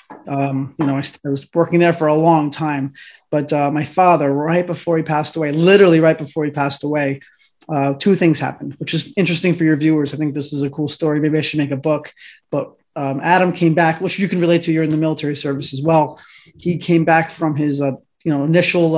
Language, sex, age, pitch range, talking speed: English, male, 20-39, 145-170 Hz, 235 wpm